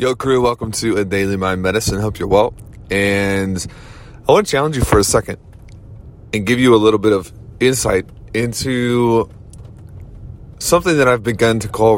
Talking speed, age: 175 wpm, 30-49